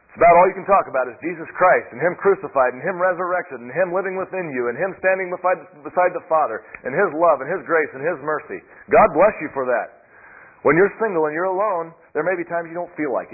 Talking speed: 245 wpm